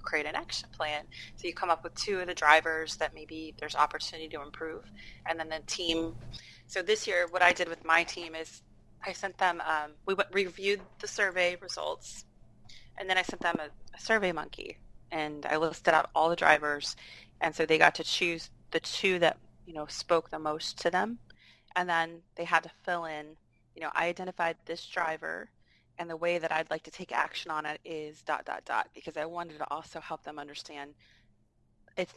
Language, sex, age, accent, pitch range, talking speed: English, female, 30-49, American, 155-175 Hz, 205 wpm